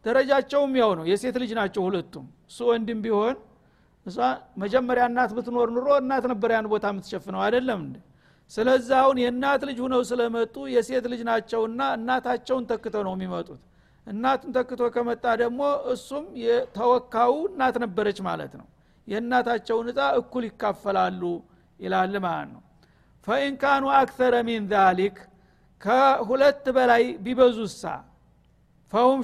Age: 60-79